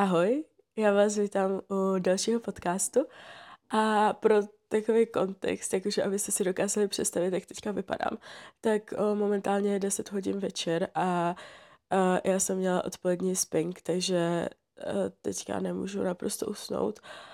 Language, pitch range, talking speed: Czech, 180-210 Hz, 130 wpm